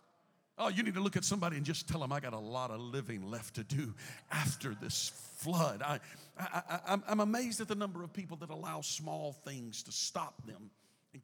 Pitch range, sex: 135-165 Hz, male